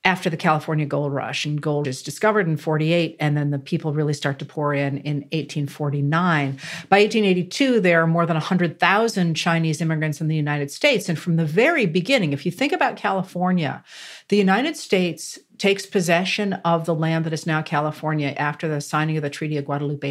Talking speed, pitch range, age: 195 wpm, 155-200 Hz, 50-69